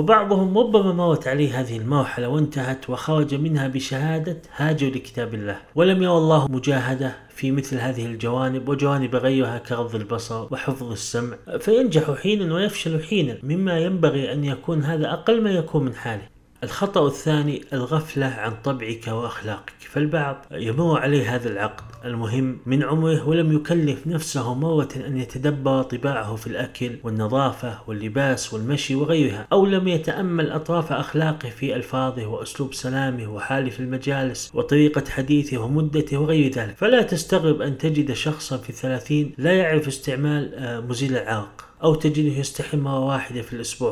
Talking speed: 140 wpm